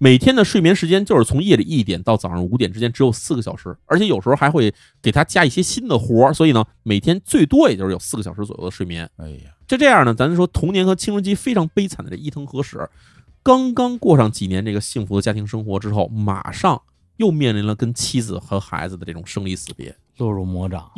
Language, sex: Chinese, male